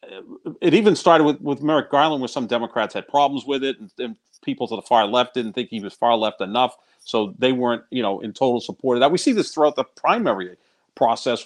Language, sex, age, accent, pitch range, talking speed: English, male, 50-69, American, 120-150 Hz, 235 wpm